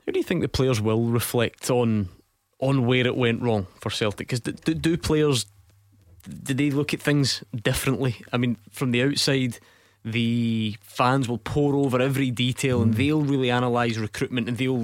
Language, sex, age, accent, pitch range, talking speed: English, male, 20-39, British, 110-130 Hz, 180 wpm